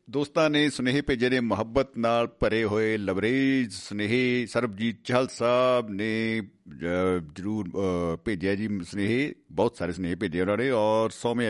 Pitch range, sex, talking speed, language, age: 100-130 Hz, male, 140 wpm, Punjabi, 50-69